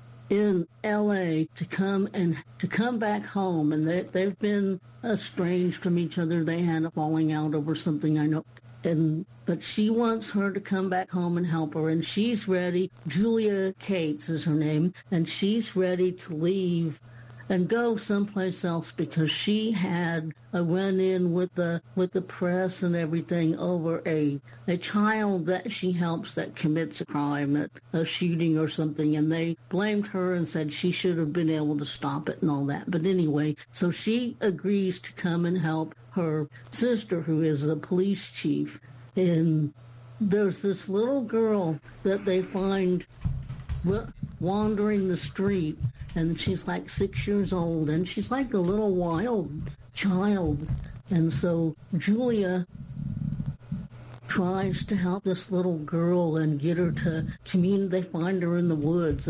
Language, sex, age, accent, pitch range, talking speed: English, female, 60-79, American, 155-190 Hz, 165 wpm